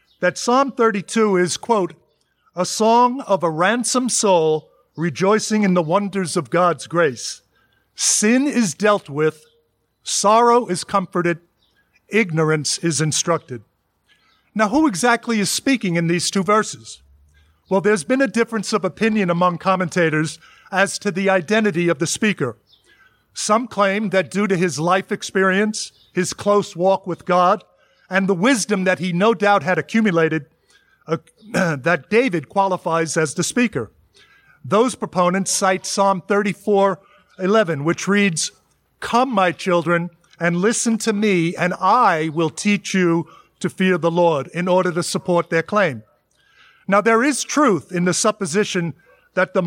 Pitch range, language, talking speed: 170-210 Hz, English, 145 wpm